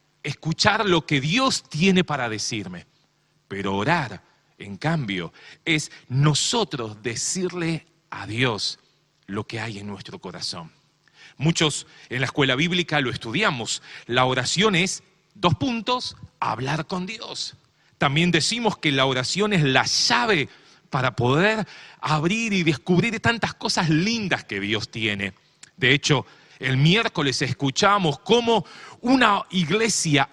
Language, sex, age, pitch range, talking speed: Spanish, male, 40-59, 130-180 Hz, 125 wpm